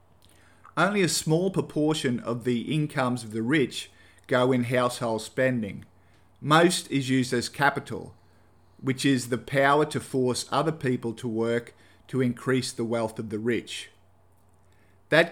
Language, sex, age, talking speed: English, male, 50-69, 145 wpm